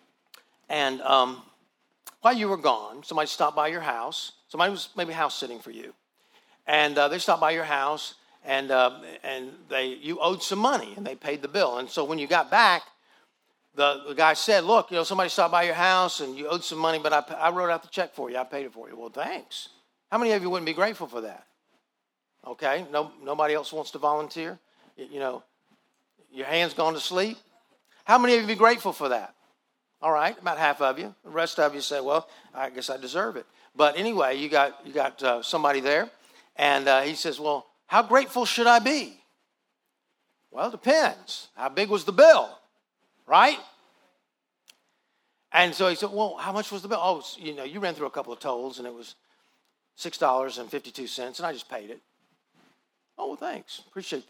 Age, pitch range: 50-69, 140-195 Hz